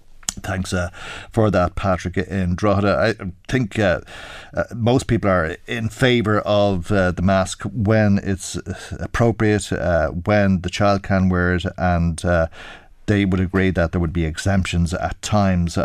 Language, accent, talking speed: English, Irish, 165 wpm